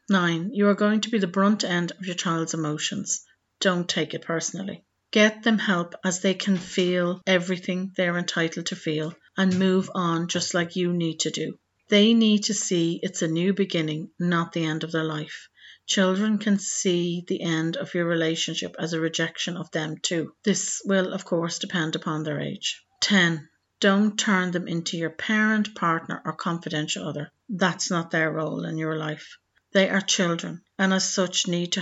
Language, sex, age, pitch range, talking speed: English, female, 40-59, 165-195 Hz, 190 wpm